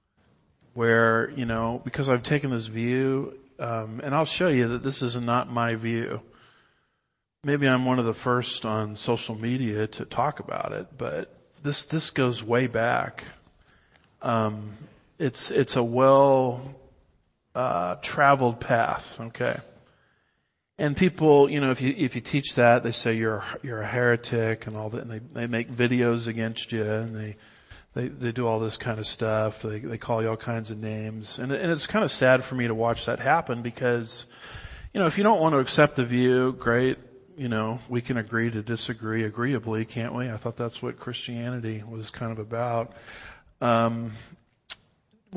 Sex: male